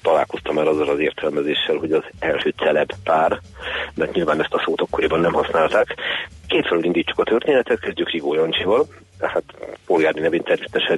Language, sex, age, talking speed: Hungarian, male, 40-59, 165 wpm